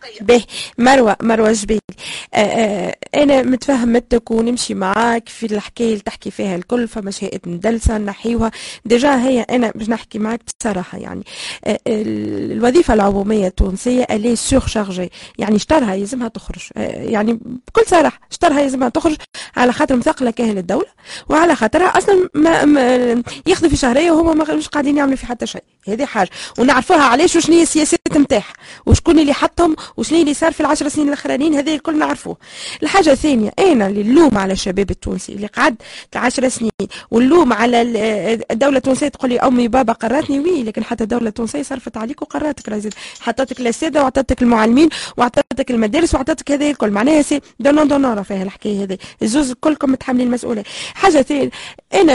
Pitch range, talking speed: 220-290 Hz, 150 wpm